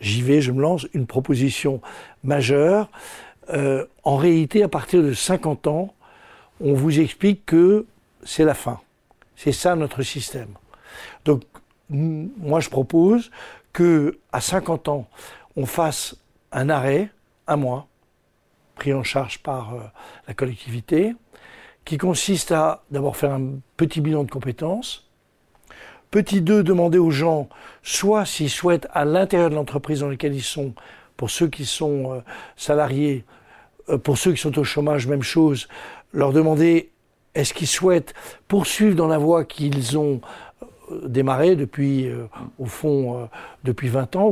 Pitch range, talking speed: 135-170 Hz, 145 wpm